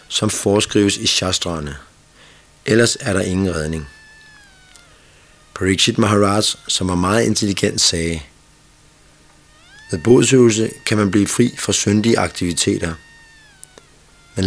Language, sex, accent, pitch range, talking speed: Danish, male, native, 90-115 Hz, 110 wpm